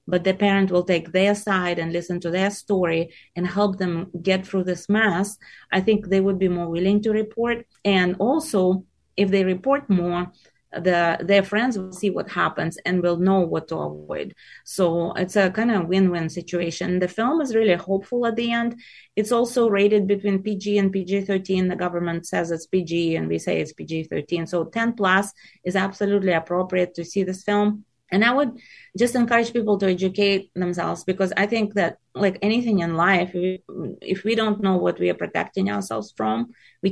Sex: female